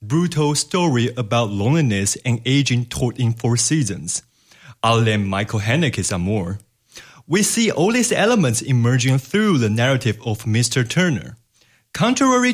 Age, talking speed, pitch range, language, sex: 30-49, 135 wpm, 120-155 Hz, English, male